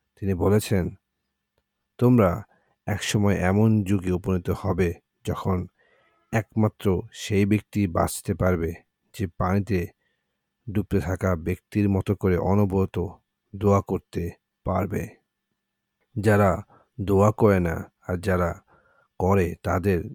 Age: 50-69